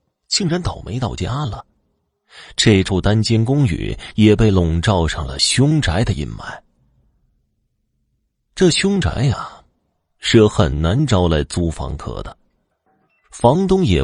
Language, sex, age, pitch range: Chinese, male, 30-49, 80-120 Hz